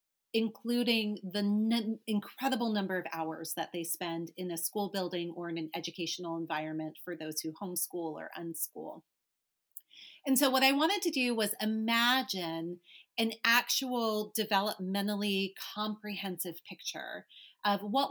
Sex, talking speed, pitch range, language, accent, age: female, 135 wpm, 180-230 Hz, English, American, 30-49